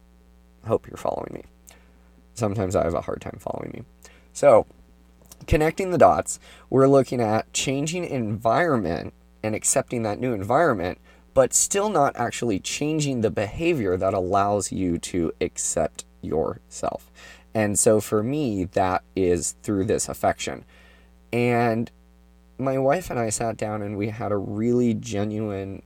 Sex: male